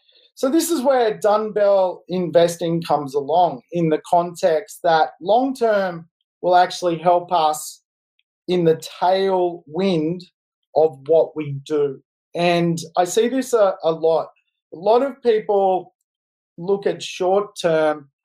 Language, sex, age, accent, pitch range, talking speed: English, male, 30-49, Australian, 155-195 Hz, 125 wpm